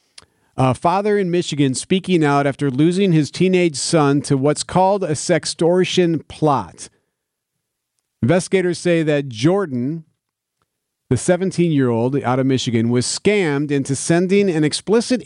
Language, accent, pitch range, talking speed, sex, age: English, American, 130-165 Hz, 125 wpm, male, 40-59